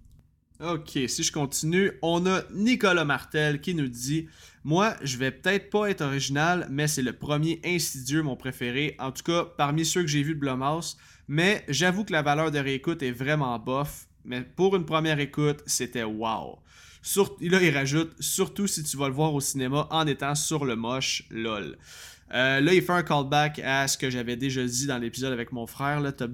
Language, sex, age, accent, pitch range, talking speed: French, male, 20-39, Canadian, 120-155 Hz, 205 wpm